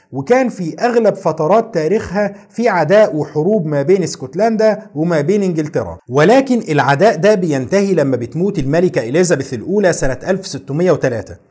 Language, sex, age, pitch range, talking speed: Arabic, male, 50-69, 155-210 Hz, 130 wpm